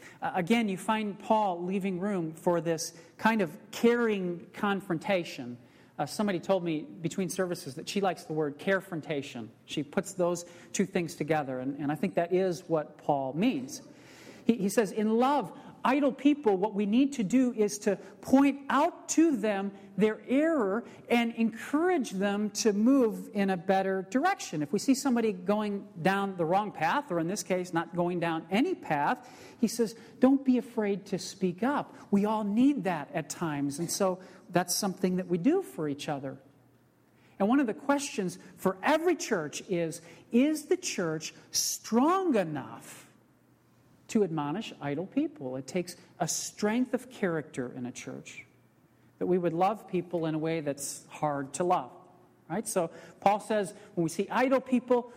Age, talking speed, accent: 40-59, 170 wpm, American